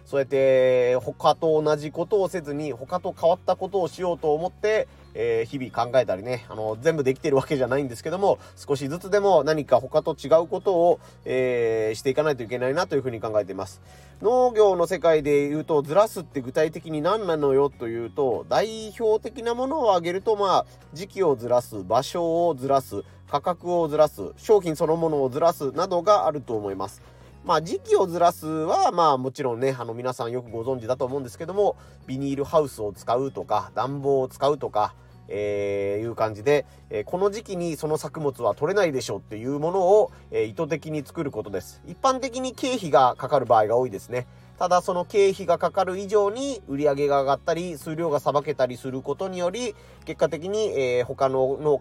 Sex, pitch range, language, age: male, 125-175 Hz, Japanese, 30-49